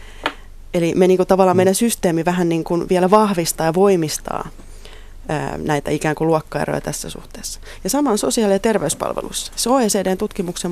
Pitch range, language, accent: 150-180 Hz, Finnish, native